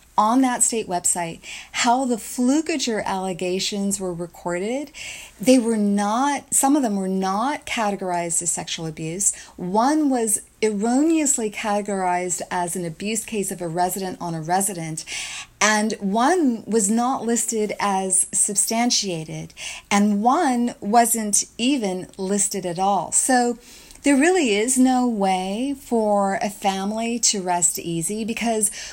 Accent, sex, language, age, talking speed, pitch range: American, female, English, 40-59, 130 wpm, 195-255 Hz